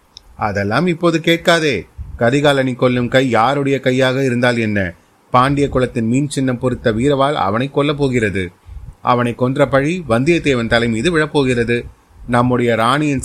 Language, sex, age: Tamil, male, 30-49